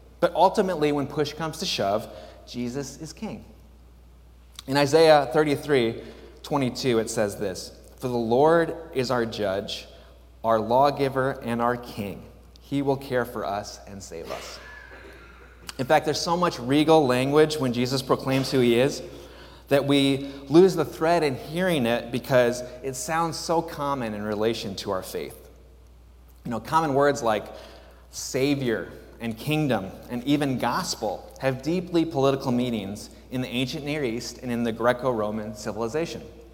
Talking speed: 150 wpm